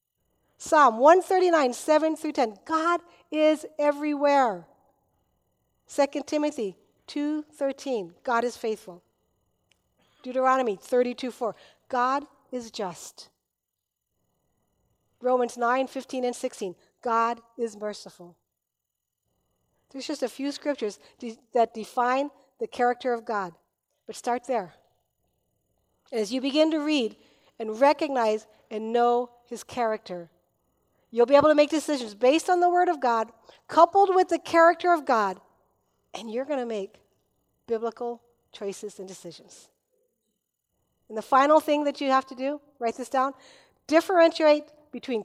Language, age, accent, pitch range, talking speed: English, 50-69, American, 235-310 Hz, 125 wpm